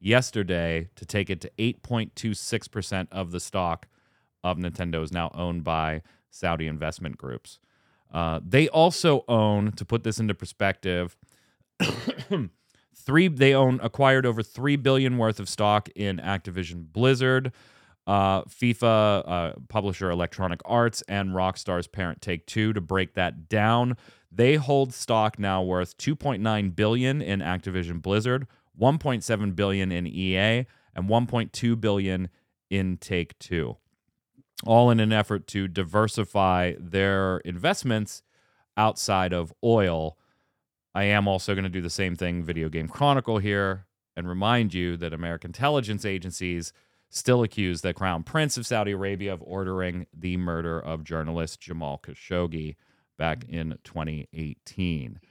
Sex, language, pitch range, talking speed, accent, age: male, English, 90-115 Hz, 130 wpm, American, 30-49